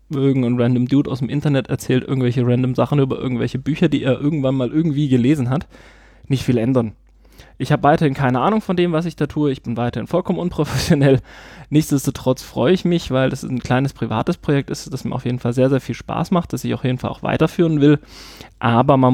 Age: 20-39